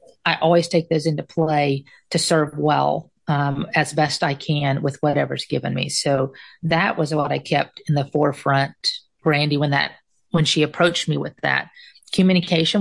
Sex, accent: female, American